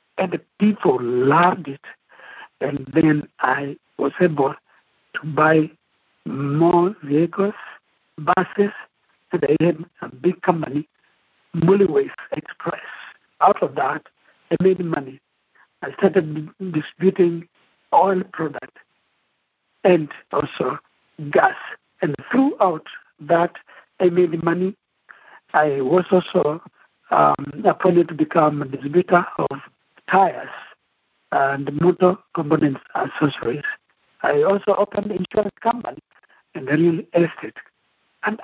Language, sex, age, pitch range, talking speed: English, male, 60-79, 150-190 Hz, 110 wpm